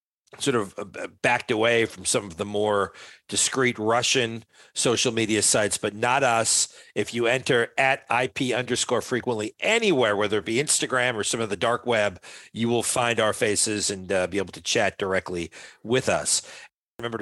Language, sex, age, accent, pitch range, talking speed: English, male, 40-59, American, 105-125 Hz, 175 wpm